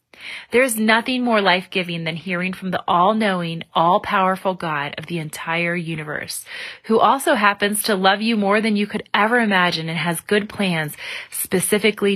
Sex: female